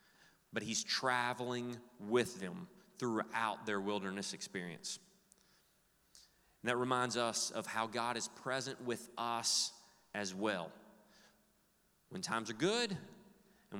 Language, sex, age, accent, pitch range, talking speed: English, male, 30-49, American, 110-140 Hz, 115 wpm